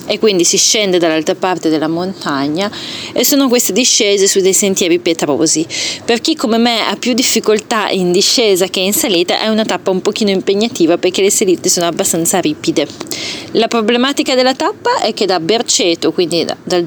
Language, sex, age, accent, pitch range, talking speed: Italian, female, 30-49, native, 185-235 Hz, 180 wpm